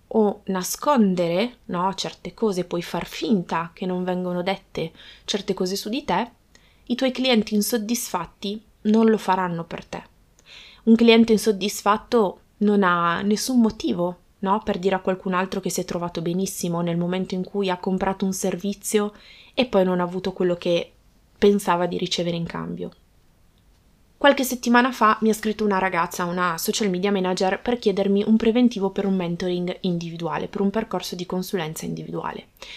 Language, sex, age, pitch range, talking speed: Italian, female, 20-39, 180-220 Hz, 165 wpm